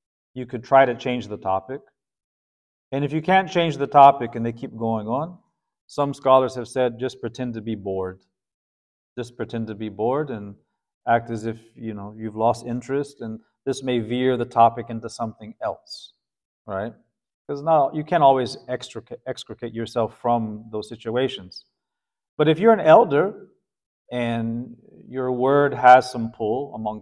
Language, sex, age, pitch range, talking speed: English, male, 40-59, 105-130 Hz, 160 wpm